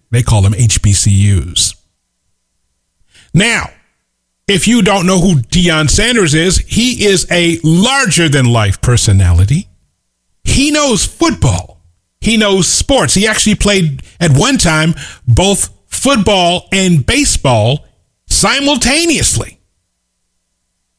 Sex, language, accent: male, English, American